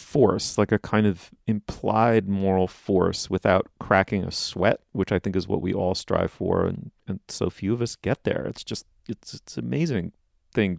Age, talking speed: 30-49, 195 wpm